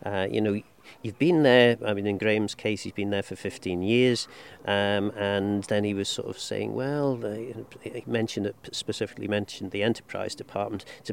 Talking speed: 190 wpm